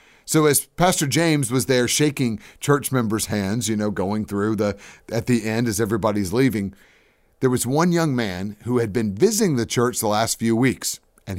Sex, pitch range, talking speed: male, 105-135 Hz, 195 wpm